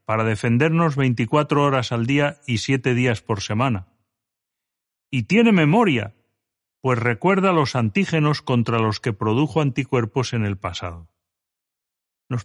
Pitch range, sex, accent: 110-155 Hz, male, Spanish